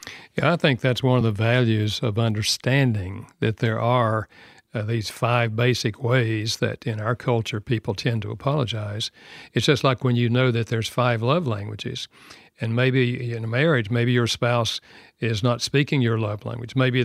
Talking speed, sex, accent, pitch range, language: 185 wpm, male, American, 115-130 Hz, English